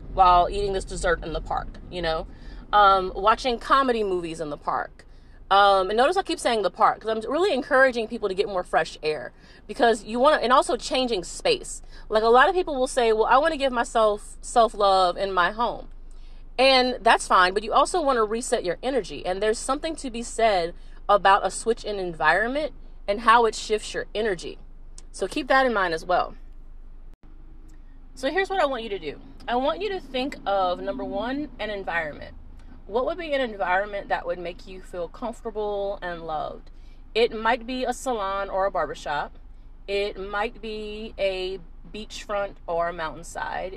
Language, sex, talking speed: English, female, 195 wpm